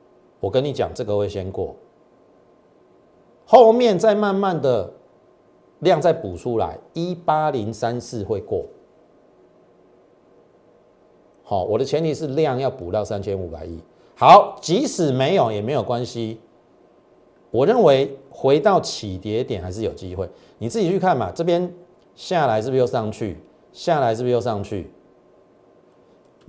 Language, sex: Chinese, male